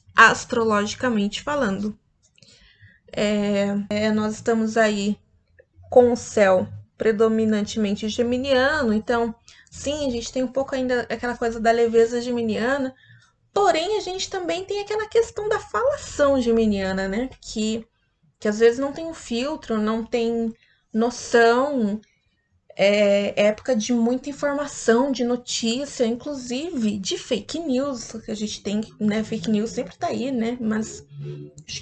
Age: 20-39